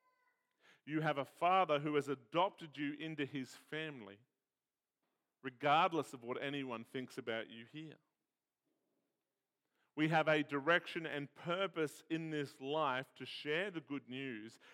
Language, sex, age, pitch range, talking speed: English, male, 40-59, 125-155 Hz, 135 wpm